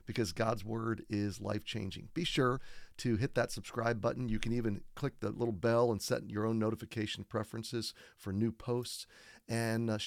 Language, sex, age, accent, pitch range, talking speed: English, male, 40-59, American, 105-125 Hz, 185 wpm